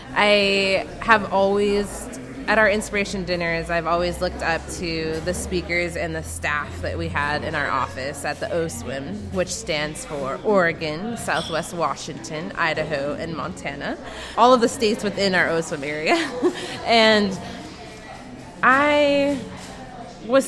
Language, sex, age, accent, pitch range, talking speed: English, female, 20-39, American, 165-200 Hz, 135 wpm